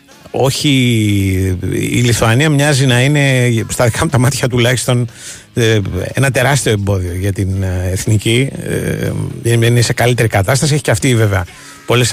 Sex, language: male, Greek